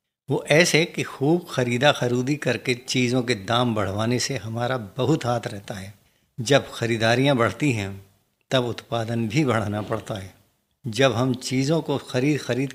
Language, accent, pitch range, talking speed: Hindi, native, 115-135 Hz, 155 wpm